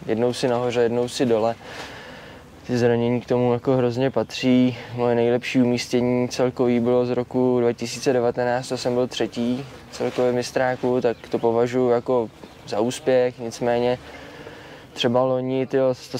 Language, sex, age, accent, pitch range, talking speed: Czech, male, 20-39, native, 115-130 Hz, 135 wpm